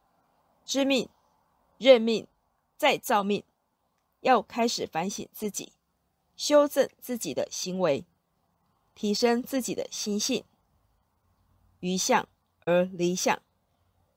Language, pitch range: Chinese, 170-230 Hz